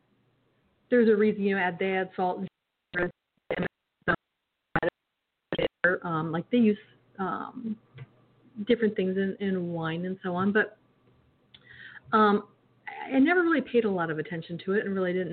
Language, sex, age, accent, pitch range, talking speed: English, female, 40-59, American, 185-240 Hz, 140 wpm